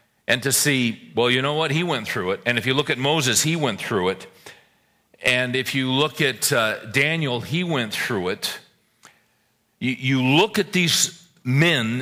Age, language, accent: 50-69, English, American